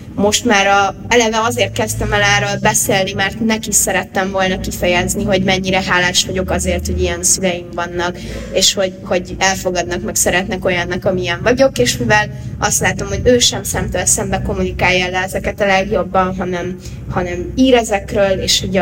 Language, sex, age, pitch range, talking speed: Hungarian, female, 20-39, 180-205 Hz, 165 wpm